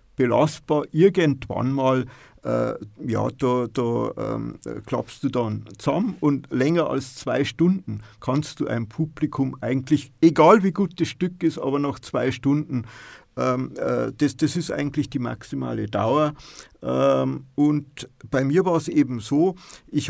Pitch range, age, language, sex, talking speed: 120-160 Hz, 50-69, German, male, 150 wpm